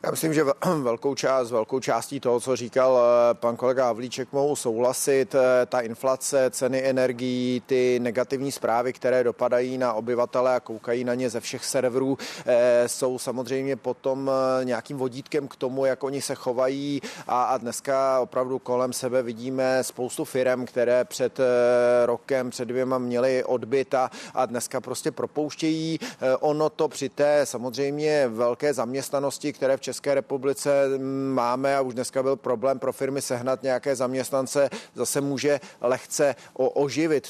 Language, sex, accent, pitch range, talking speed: Czech, male, native, 125-140 Hz, 145 wpm